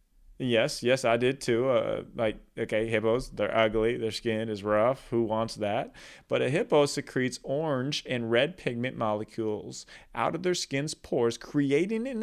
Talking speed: 165 wpm